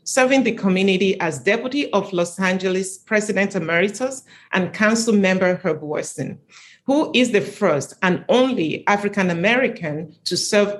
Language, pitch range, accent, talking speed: English, 175-215 Hz, Nigerian, 135 wpm